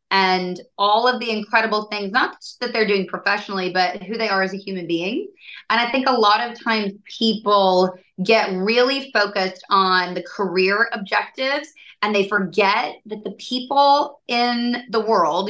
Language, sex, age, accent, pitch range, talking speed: English, female, 20-39, American, 185-225 Hz, 170 wpm